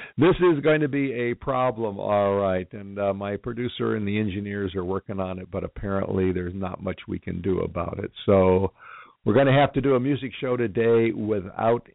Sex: male